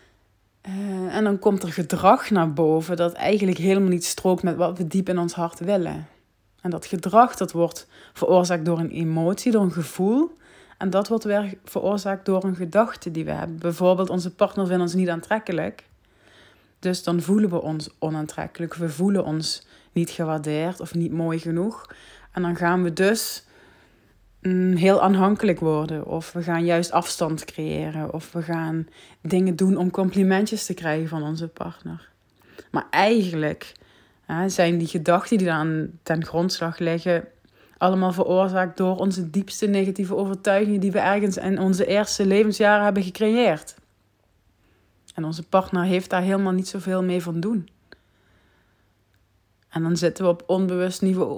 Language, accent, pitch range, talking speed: Dutch, Dutch, 160-195 Hz, 160 wpm